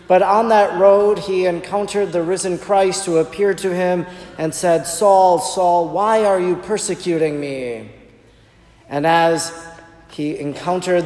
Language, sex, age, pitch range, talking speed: English, male, 40-59, 150-190 Hz, 140 wpm